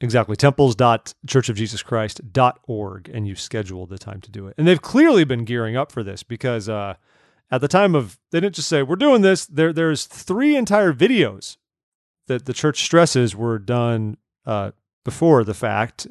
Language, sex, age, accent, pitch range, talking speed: English, male, 30-49, American, 110-150 Hz, 170 wpm